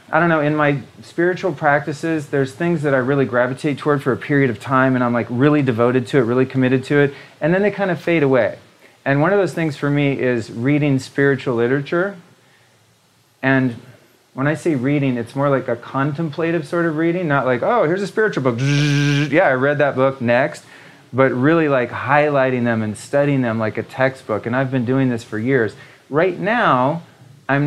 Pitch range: 120-150 Hz